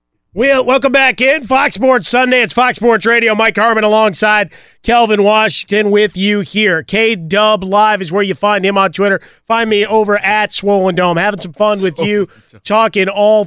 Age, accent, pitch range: 30-49, American, 180-215 Hz